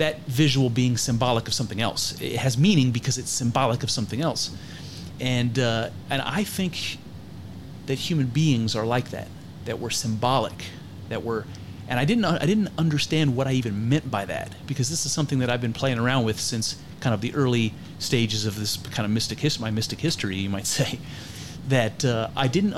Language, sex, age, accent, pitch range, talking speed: English, male, 30-49, American, 110-140 Hz, 200 wpm